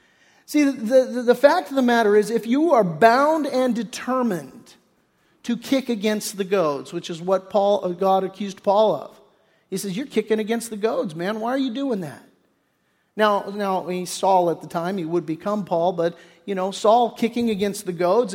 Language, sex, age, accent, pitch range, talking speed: English, male, 50-69, American, 195-250 Hz, 195 wpm